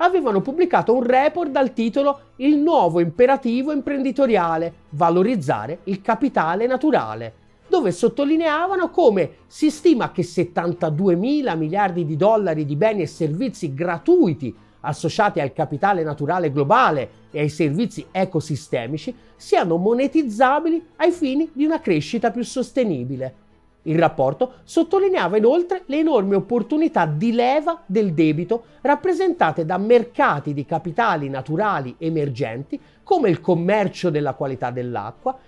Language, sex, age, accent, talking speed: Italian, male, 40-59, native, 120 wpm